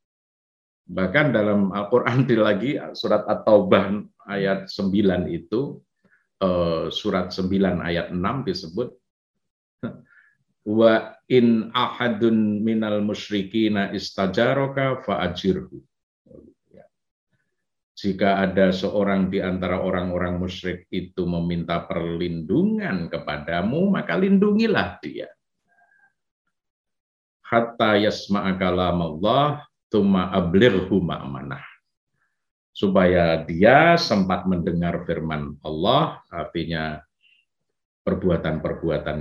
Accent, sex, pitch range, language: native, male, 85-115 Hz, Indonesian